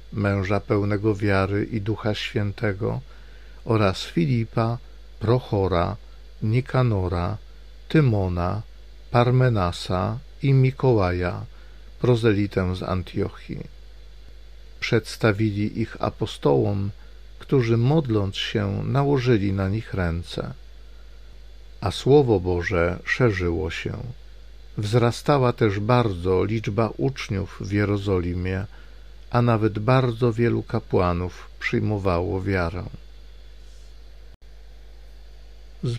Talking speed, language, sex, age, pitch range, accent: 80 wpm, Polish, male, 50-69, 70-115 Hz, native